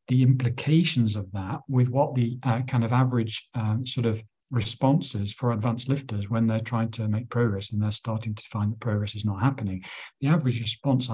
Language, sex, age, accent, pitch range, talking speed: English, male, 50-69, British, 110-130 Hz, 200 wpm